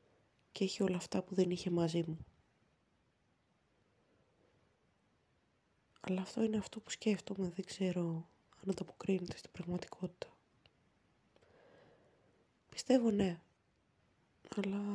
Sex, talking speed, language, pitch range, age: female, 95 wpm, Greek, 170-200 Hz, 20-39